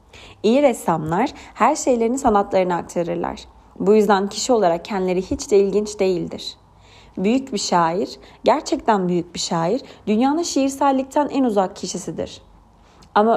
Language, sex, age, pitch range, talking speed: Turkish, female, 30-49, 180-240 Hz, 125 wpm